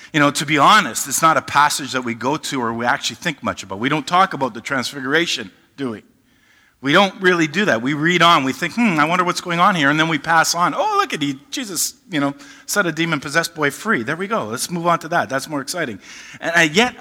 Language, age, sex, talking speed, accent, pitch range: English, 50-69, male, 260 wpm, American, 120-170 Hz